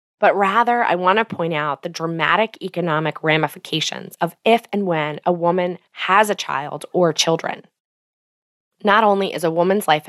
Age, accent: 20-39, American